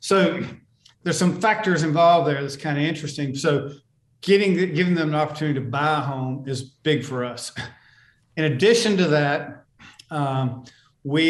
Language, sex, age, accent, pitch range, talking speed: English, male, 50-69, American, 140-160 Hz, 160 wpm